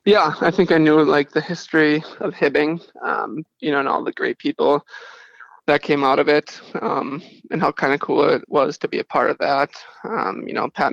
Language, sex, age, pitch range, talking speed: English, male, 20-39, 145-160 Hz, 225 wpm